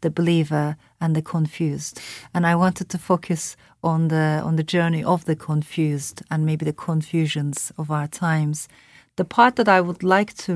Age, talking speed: 40-59, 180 wpm